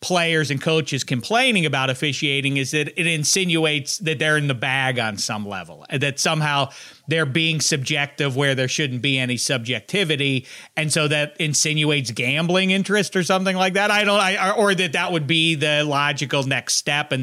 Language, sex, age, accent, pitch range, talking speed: English, male, 40-59, American, 135-195 Hz, 185 wpm